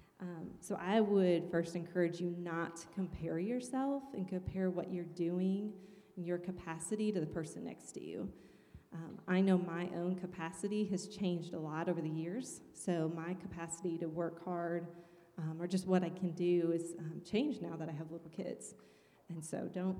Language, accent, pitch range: English, American, 165-185 Hz